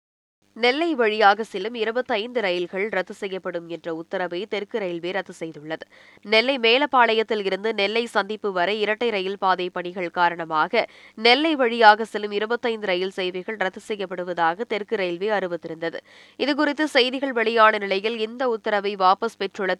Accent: native